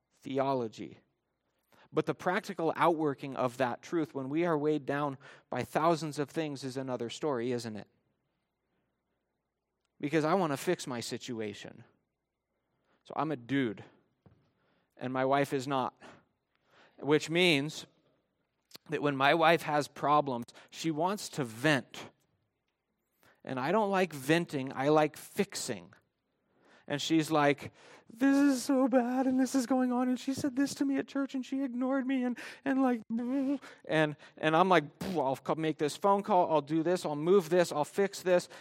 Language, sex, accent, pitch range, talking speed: English, male, American, 145-200 Hz, 160 wpm